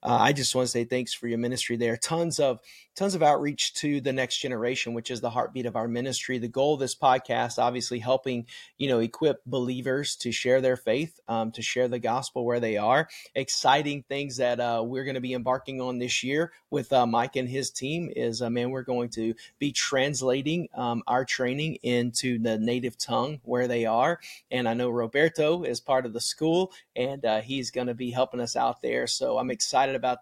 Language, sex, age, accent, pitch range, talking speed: English, male, 30-49, American, 120-135 Hz, 215 wpm